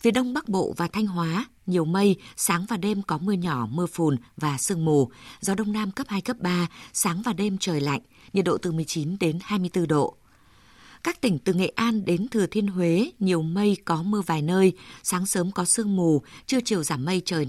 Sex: female